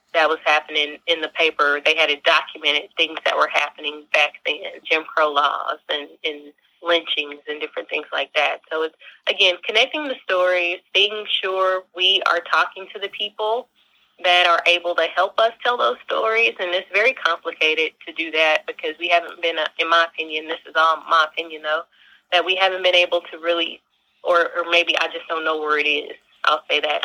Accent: American